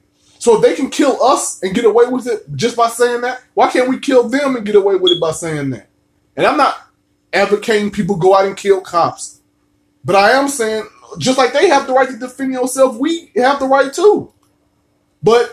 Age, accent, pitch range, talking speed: 20-39, American, 180-245 Hz, 220 wpm